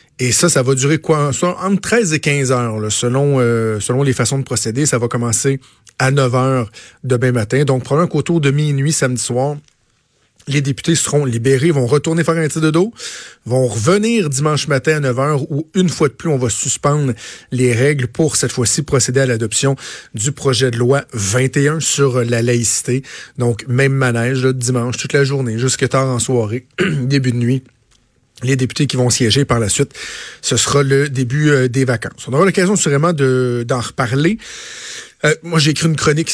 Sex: male